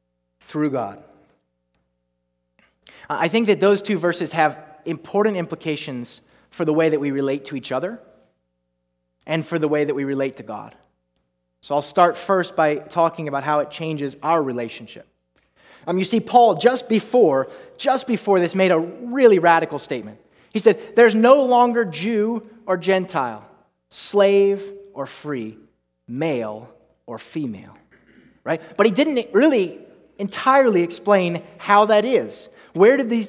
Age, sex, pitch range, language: 30-49, male, 140-205 Hz, English